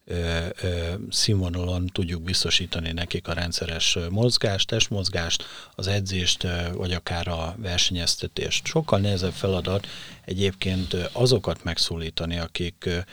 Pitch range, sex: 85-95 Hz, male